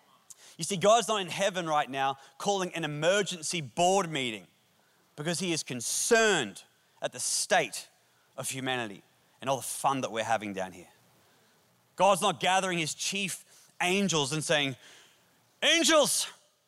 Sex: male